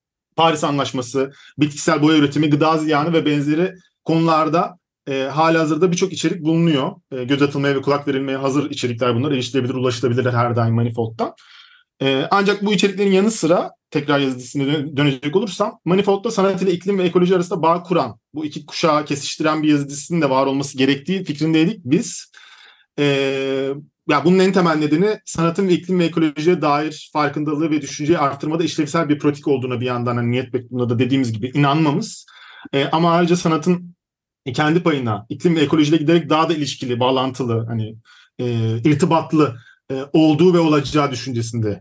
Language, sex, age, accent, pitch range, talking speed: Turkish, male, 40-59, native, 125-165 Hz, 160 wpm